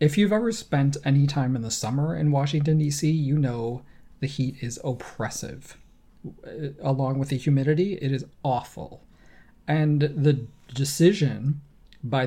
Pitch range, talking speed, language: 130-155 Hz, 140 wpm, English